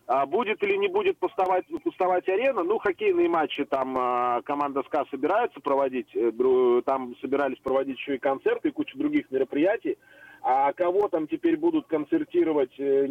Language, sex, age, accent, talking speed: Russian, male, 30-49, native, 145 wpm